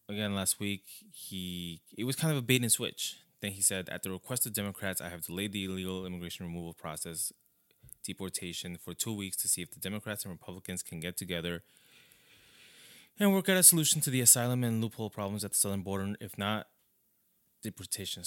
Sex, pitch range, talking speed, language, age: male, 90-120 Hz, 195 wpm, English, 20-39